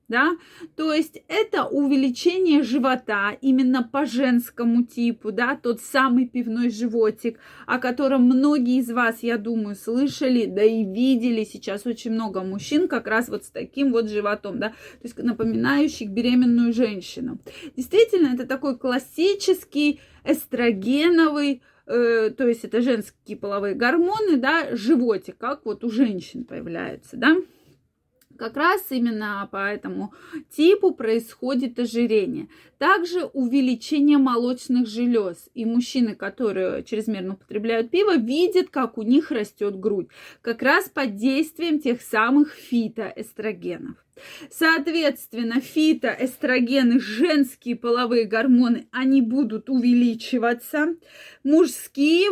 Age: 20-39